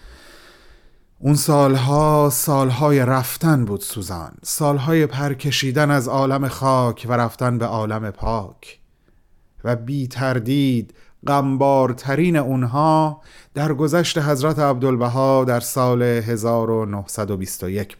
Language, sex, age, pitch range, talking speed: Persian, male, 40-59, 125-155 Hz, 95 wpm